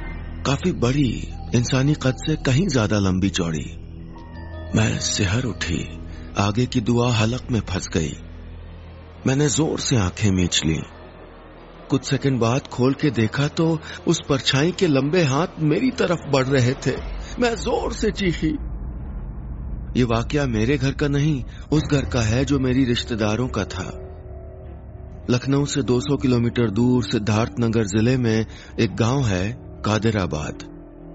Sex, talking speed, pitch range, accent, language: male, 145 wpm, 95-135 Hz, native, Hindi